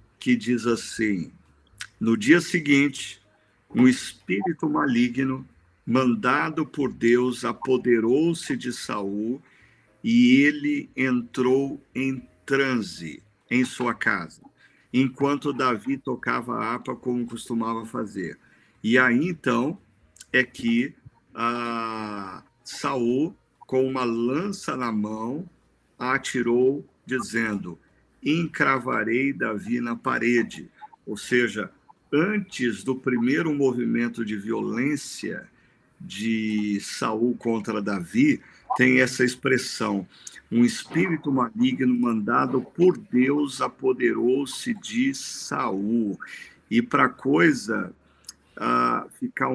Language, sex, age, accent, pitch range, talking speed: Portuguese, male, 50-69, Brazilian, 115-135 Hz, 95 wpm